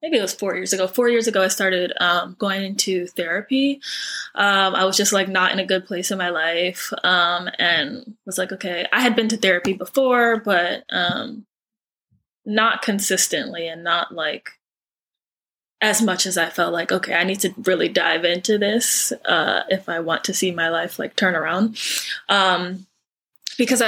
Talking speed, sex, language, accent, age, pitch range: 185 wpm, female, English, American, 20-39, 180-220 Hz